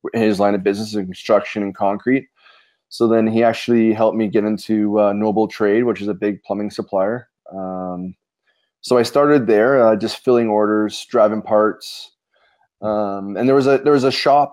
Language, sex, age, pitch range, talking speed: English, male, 20-39, 105-115 Hz, 185 wpm